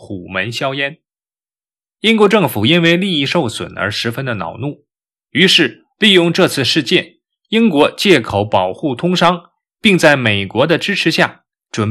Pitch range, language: 115-180 Hz, Chinese